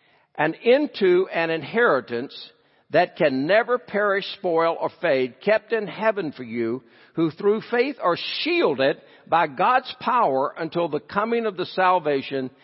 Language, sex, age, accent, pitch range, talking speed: English, male, 60-79, American, 180-250 Hz, 140 wpm